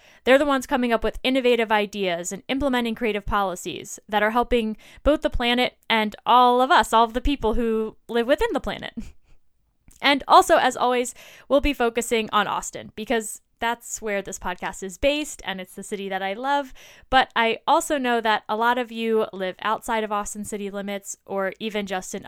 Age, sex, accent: 10-29, female, American